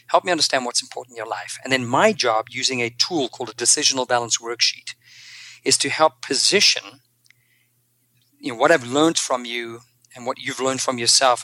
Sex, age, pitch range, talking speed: male, 40-59, 120-150 Hz, 195 wpm